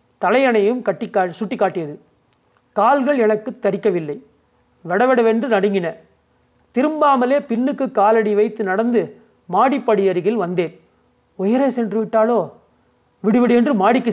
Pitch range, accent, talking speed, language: 185-245 Hz, native, 95 wpm, Tamil